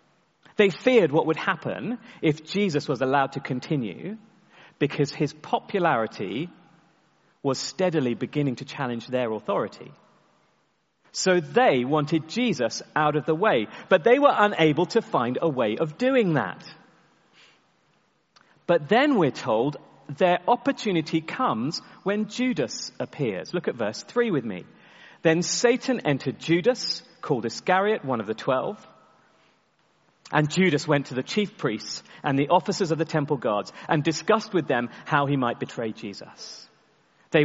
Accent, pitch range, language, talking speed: British, 150-210 Hz, English, 145 wpm